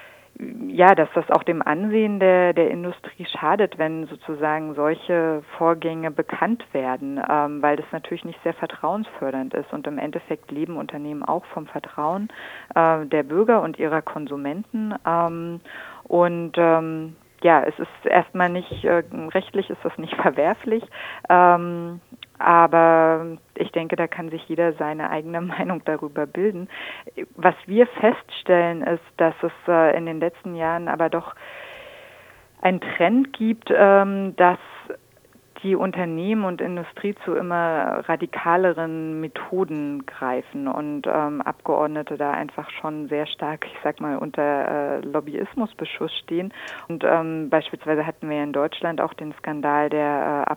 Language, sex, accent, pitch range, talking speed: German, female, German, 155-180 Hz, 140 wpm